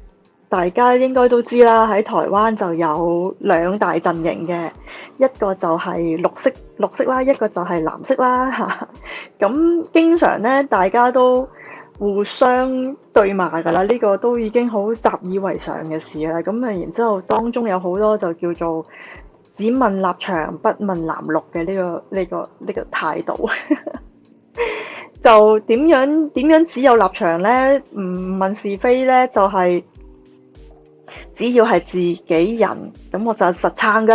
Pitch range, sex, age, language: 180-255 Hz, female, 20-39, Chinese